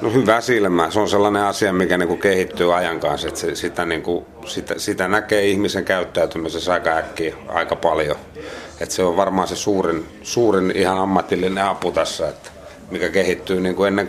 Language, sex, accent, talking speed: Finnish, male, native, 140 wpm